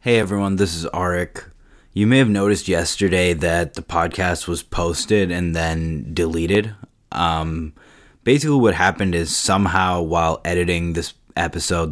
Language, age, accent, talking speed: English, 20-39, American, 140 wpm